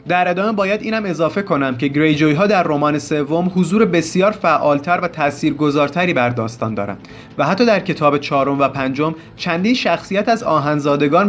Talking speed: 165 wpm